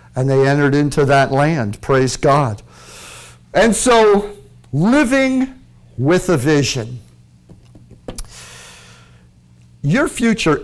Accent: American